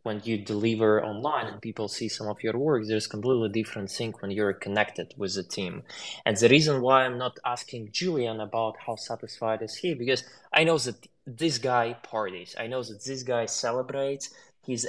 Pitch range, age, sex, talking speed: 110-130 Hz, 20-39, male, 200 wpm